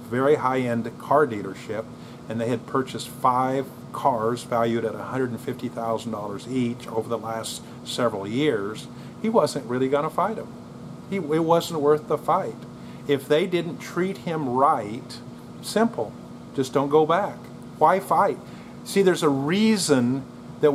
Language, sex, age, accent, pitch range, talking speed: English, male, 40-59, American, 125-160 Hz, 140 wpm